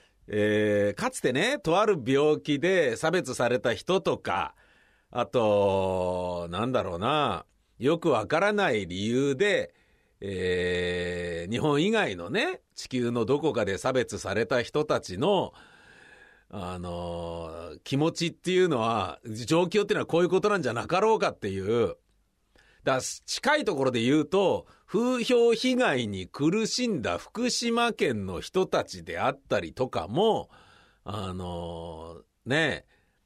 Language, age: Japanese, 40-59